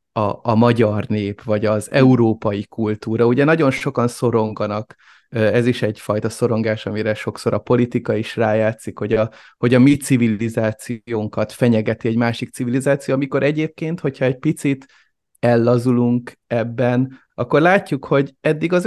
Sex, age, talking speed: male, 30-49, 135 wpm